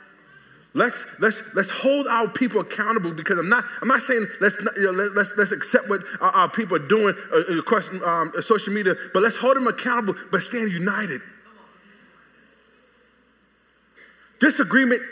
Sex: male